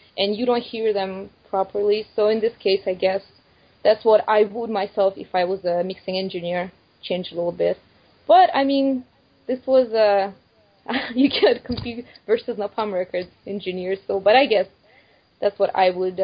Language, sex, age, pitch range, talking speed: English, female, 20-39, 190-240 Hz, 180 wpm